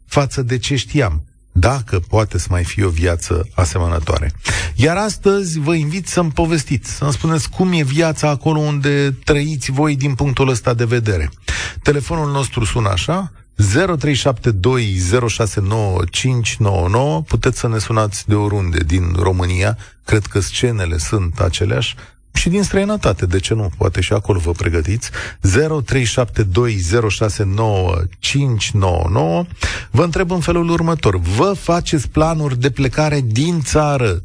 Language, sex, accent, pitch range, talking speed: Romanian, male, native, 100-145 Hz, 130 wpm